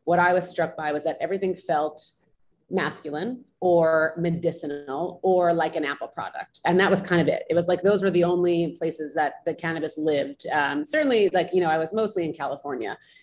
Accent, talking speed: American, 205 wpm